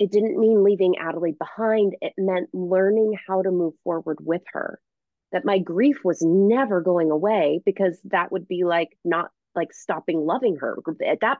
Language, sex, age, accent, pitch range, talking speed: English, female, 30-49, American, 165-205 Hz, 180 wpm